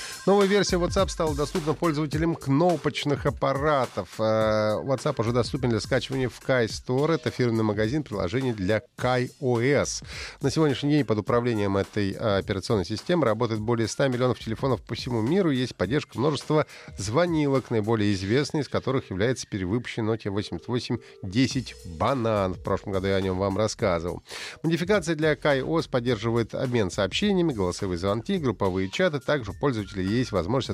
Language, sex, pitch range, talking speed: Russian, male, 105-150 Hz, 145 wpm